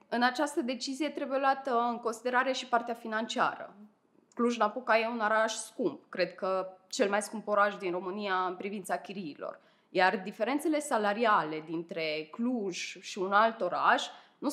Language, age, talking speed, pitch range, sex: Romanian, 20-39, 150 wpm, 195-250 Hz, female